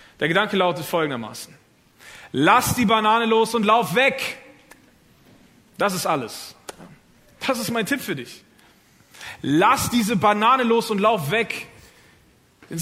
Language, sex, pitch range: German, male, 170-225 Hz